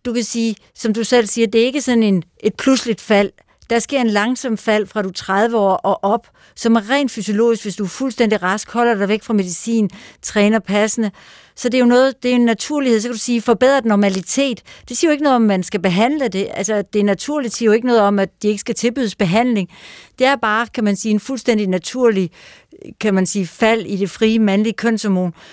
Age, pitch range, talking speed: 60-79, 205-245 Hz, 240 wpm